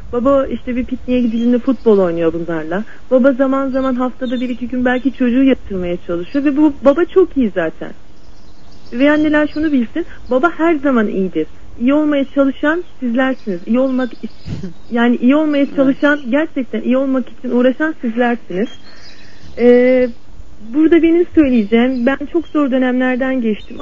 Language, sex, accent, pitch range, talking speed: Turkish, female, native, 230-290 Hz, 150 wpm